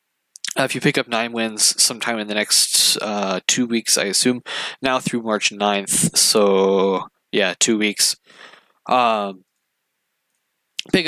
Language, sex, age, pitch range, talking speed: English, male, 20-39, 100-115 Hz, 135 wpm